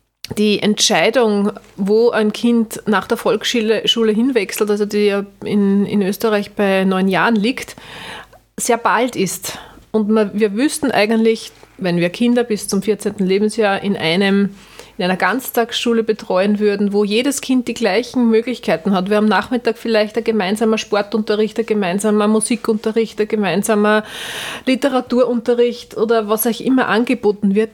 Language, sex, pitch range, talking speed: German, female, 200-235 Hz, 140 wpm